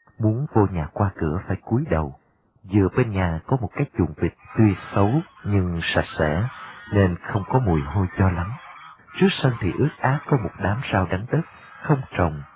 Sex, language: male, Vietnamese